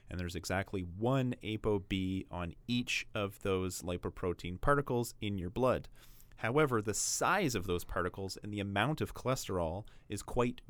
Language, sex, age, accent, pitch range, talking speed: English, male, 30-49, American, 90-120 Hz, 150 wpm